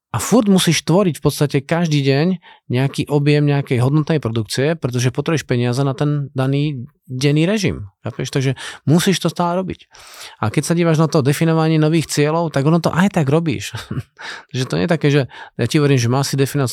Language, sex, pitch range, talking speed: Slovak, male, 125-160 Hz, 195 wpm